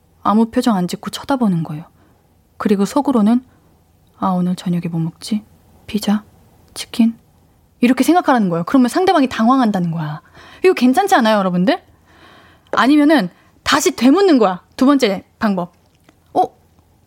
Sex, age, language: female, 20-39, Korean